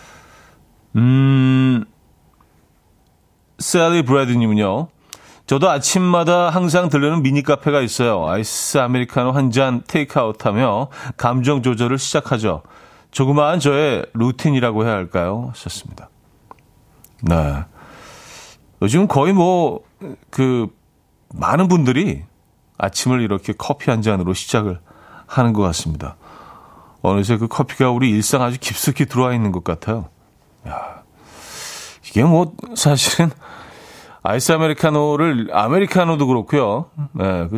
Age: 40-59